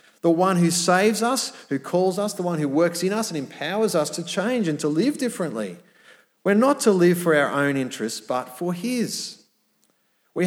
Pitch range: 130-180 Hz